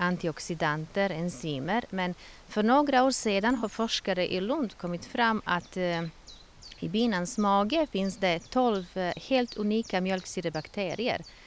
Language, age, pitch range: Swedish, 30-49, 165-215 Hz